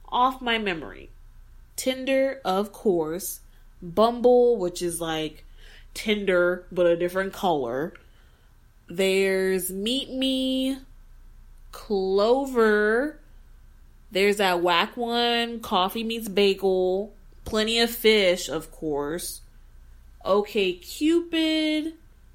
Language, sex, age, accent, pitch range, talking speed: English, female, 20-39, American, 180-260 Hz, 90 wpm